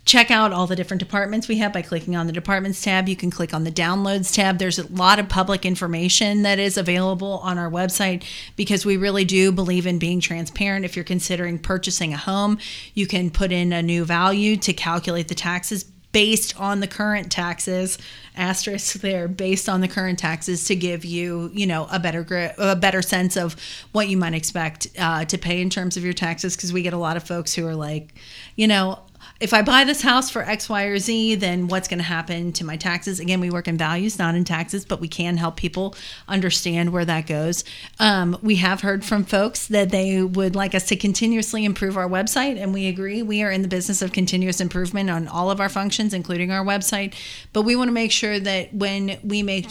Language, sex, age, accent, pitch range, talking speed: English, female, 30-49, American, 175-200 Hz, 225 wpm